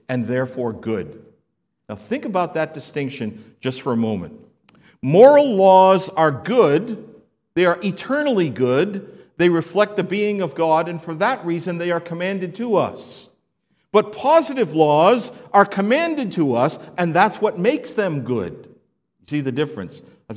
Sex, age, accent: male, 50-69, American